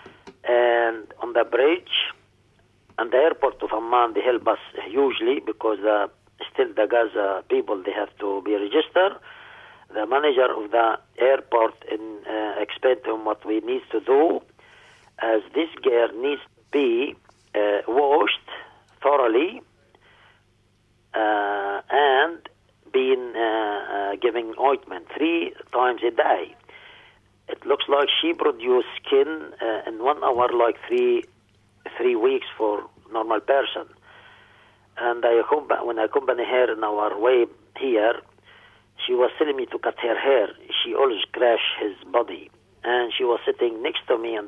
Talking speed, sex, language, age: 140 wpm, male, English, 50-69